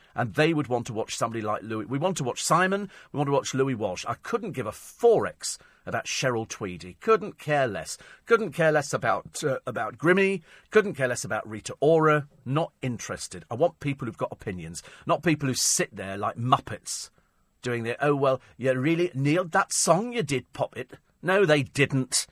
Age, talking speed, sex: 40-59, 200 wpm, male